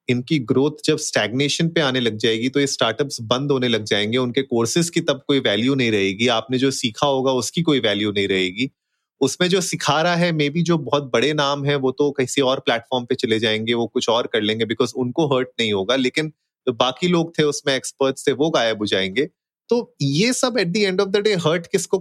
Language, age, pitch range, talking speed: Hindi, 30-49, 115-150 Hz, 230 wpm